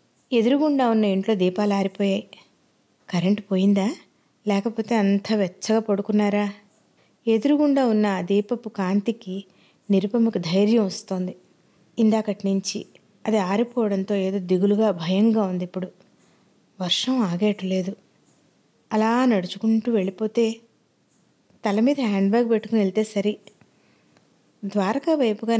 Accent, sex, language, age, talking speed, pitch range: native, female, Telugu, 20-39, 95 wpm, 195-230 Hz